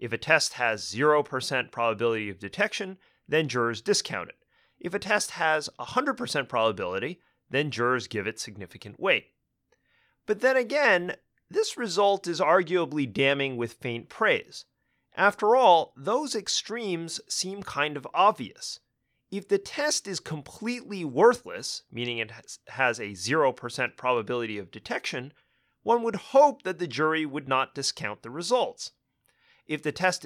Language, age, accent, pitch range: English, 30-49, American, 125-210 Hz